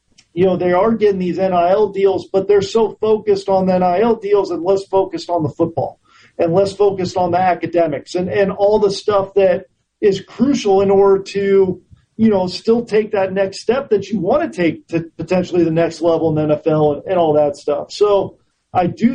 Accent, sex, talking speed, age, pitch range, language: American, male, 210 wpm, 40-59, 165-200 Hz, English